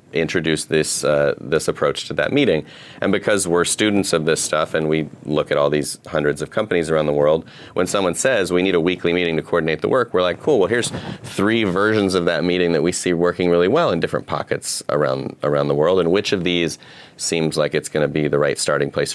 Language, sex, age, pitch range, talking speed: English, male, 30-49, 80-95 Hz, 240 wpm